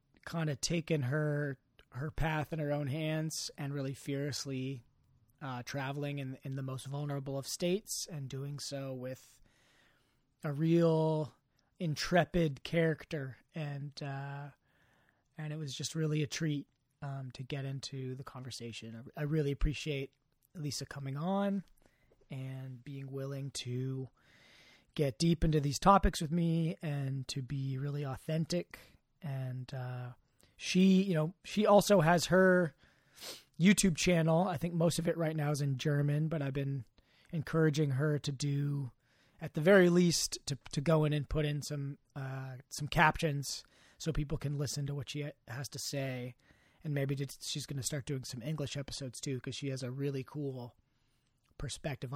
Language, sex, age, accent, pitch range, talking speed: English, male, 30-49, American, 135-160 Hz, 160 wpm